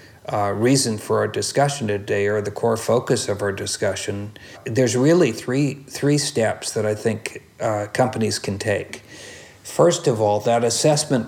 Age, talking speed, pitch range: 50-69, 160 wpm, 105-130 Hz